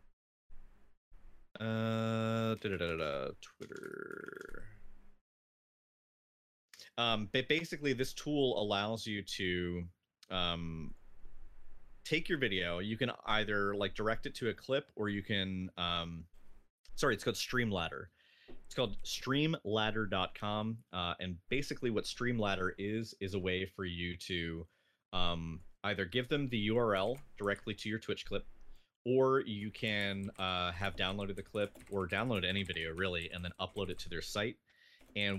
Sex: male